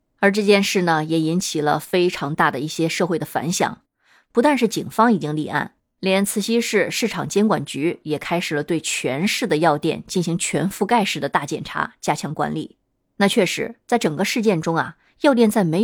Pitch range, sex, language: 165-230 Hz, female, Chinese